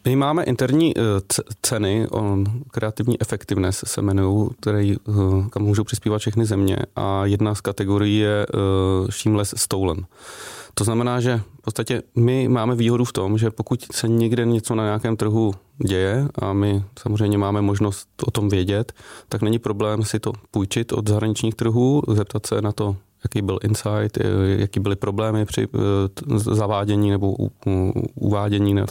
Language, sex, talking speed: Czech, male, 145 wpm